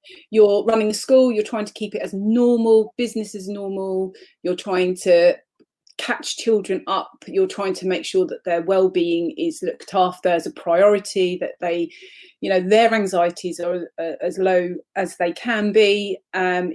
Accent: British